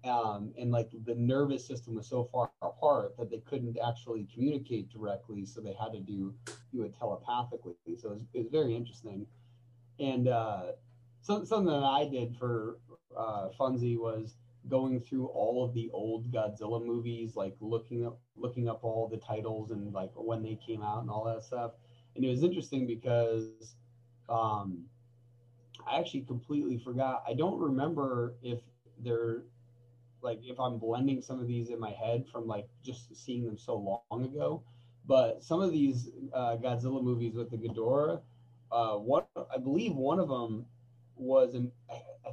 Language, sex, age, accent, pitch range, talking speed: English, male, 30-49, American, 115-130 Hz, 165 wpm